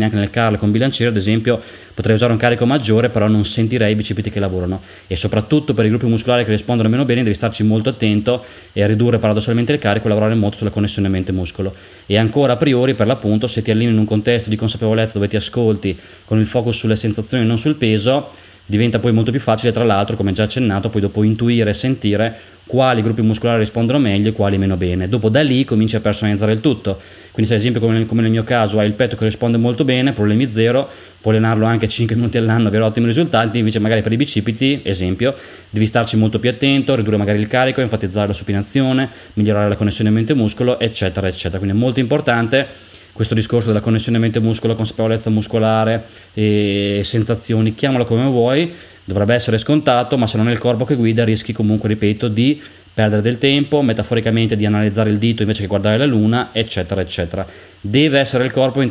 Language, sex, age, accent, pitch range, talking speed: Italian, male, 20-39, native, 105-120 Hz, 210 wpm